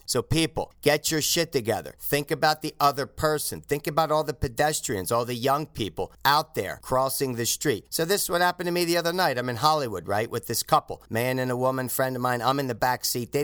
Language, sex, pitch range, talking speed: English, male, 140-205 Hz, 245 wpm